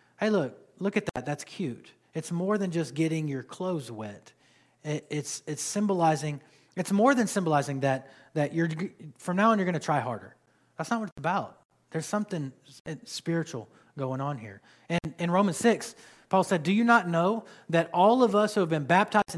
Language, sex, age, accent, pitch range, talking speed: English, male, 30-49, American, 145-195 Hz, 190 wpm